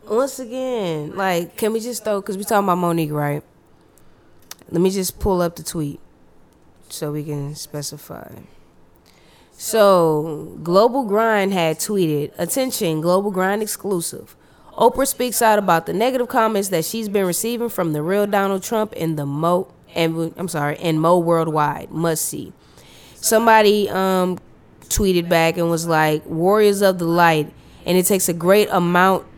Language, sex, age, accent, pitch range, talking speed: English, female, 20-39, American, 160-195 Hz, 155 wpm